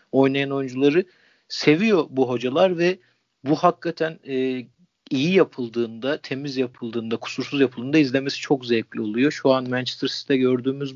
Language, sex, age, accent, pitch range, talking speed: Turkish, male, 40-59, native, 130-155 Hz, 130 wpm